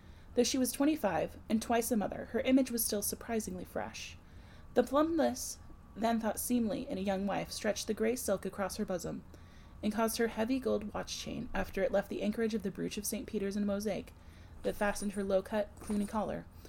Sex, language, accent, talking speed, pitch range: female, English, American, 200 wpm, 175-230 Hz